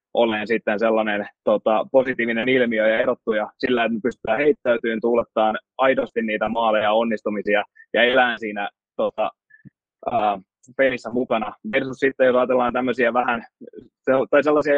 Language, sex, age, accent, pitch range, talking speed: Finnish, male, 20-39, native, 110-130 Hz, 130 wpm